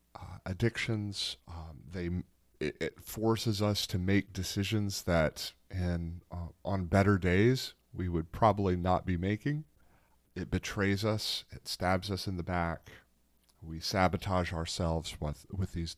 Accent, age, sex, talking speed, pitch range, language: American, 40-59, male, 145 wpm, 80-95 Hz, English